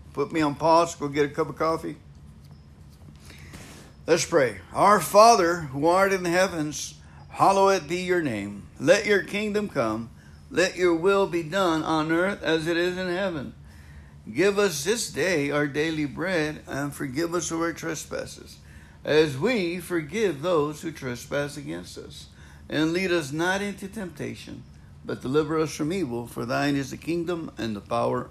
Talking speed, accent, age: 165 wpm, American, 60-79